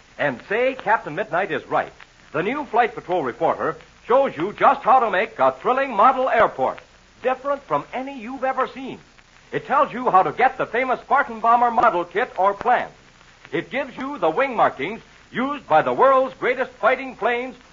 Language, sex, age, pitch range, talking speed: English, male, 60-79, 185-265 Hz, 185 wpm